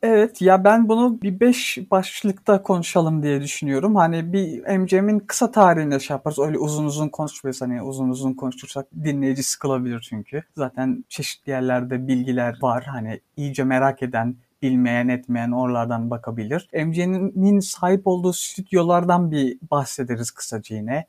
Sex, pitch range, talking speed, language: male, 140-200 Hz, 135 wpm, Turkish